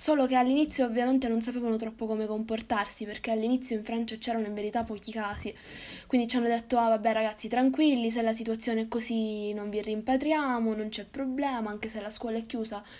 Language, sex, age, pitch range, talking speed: Italian, female, 10-29, 215-245 Hz, 200 wpm